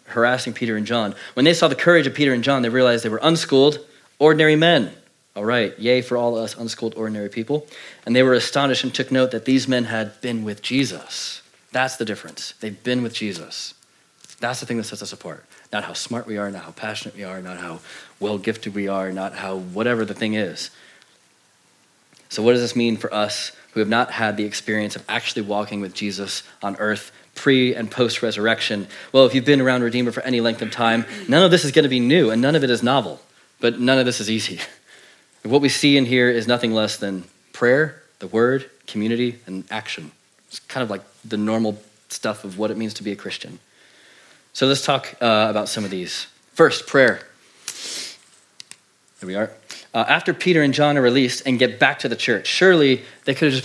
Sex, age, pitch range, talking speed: male, 30-49, 105-130 Hz, 215 wpm